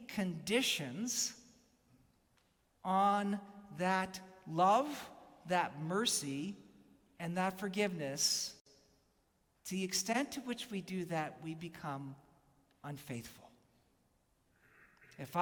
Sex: male